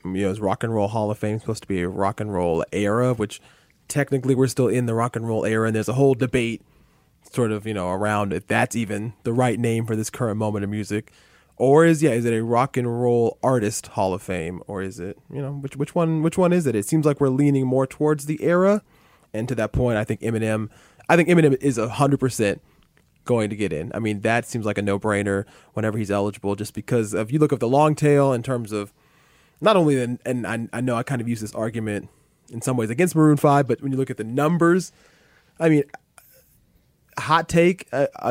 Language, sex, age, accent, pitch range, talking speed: English, male, 20-39, American, 110-140 Hz, 245 wpm